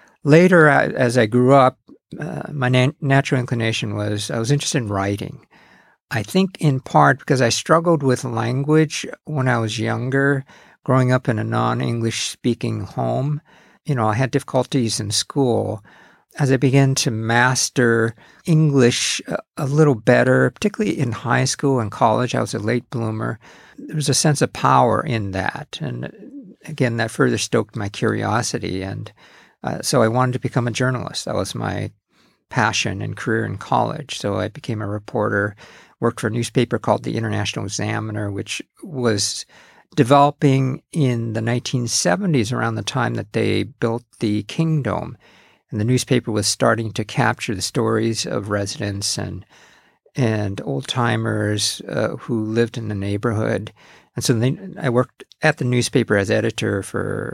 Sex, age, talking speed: male, 50-69, 160 wpm